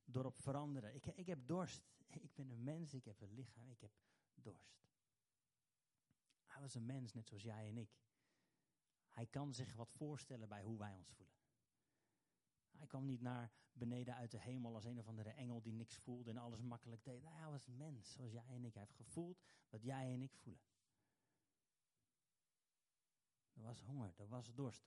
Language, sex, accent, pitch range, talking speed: Dutch, male, Dutch, 110-135 Hz, 190 wpm